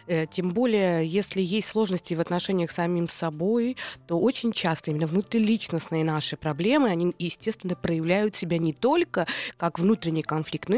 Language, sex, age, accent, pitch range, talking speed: Russian, female, 20-39, native, 160-205 Hz, 150 wpm